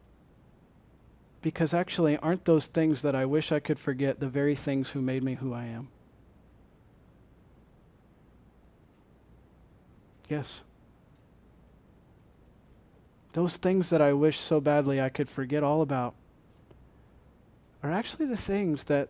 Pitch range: 140-215 Hz